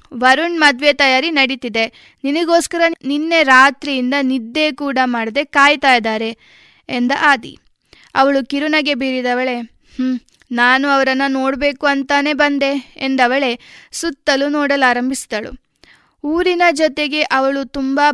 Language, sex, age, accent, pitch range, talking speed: Kannada, female, 20-39, native, 250-285 Hz, 95 wpm